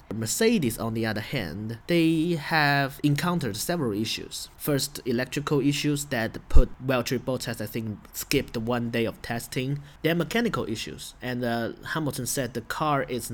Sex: male